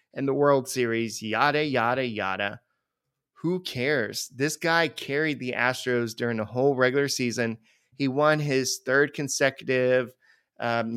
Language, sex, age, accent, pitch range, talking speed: English, male, 30-49, American, 115-140 Hz, 135 wpm